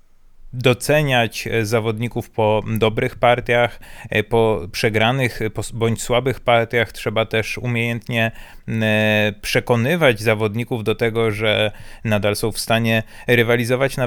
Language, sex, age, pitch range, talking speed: Polish, male, 30-49, 110-125 Hz, 100 wpm